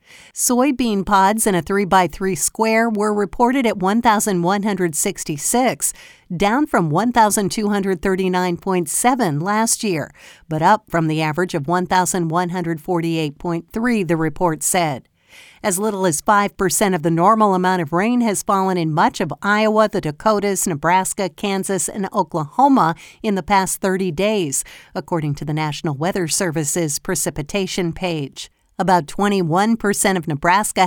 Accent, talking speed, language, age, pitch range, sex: American, 125 wpm, English, 50-69, 170-210 Hz, female